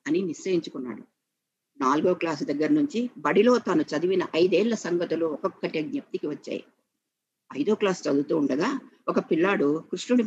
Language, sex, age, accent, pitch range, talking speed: Telugu, female, 50-69, native, 170-265 Hz, 125 wpm